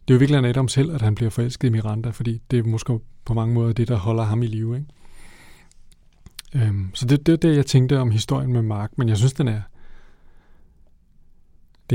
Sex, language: male, Danish